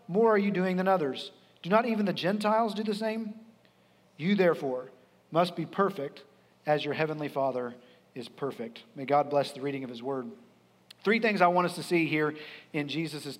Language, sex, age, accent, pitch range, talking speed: English, male, 40-59, American, 170-210 Hz, 195 wpm